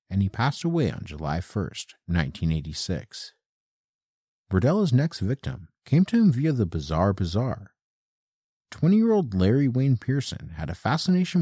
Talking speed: 130 wpm